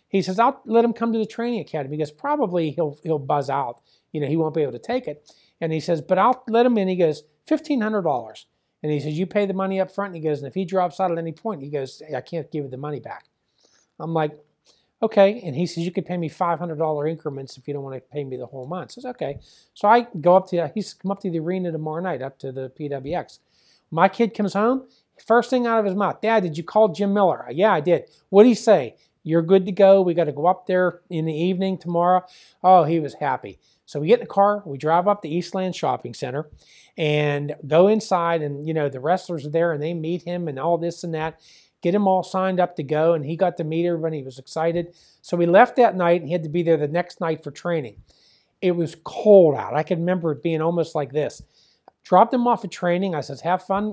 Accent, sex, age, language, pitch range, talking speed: American, male, 40-59, English, 155-195 Hz, 265 wpm